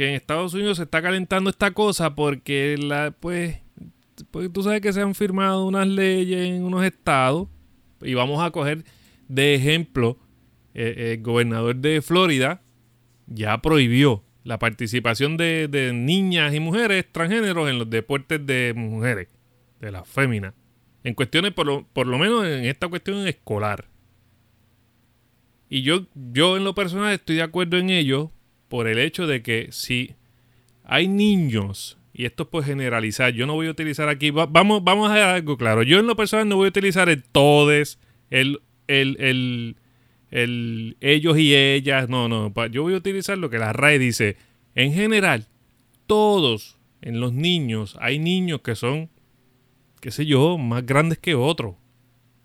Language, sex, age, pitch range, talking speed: Spanish, male, 30-49, 120-170 Hz, 165 wpm